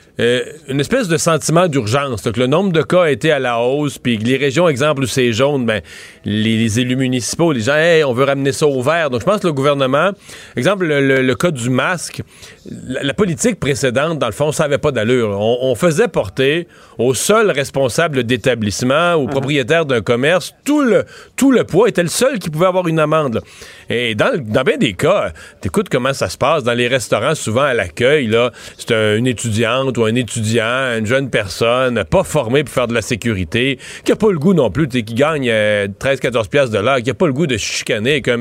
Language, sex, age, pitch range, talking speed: French, male, 40-59, 125-155 Hz, 215 wpm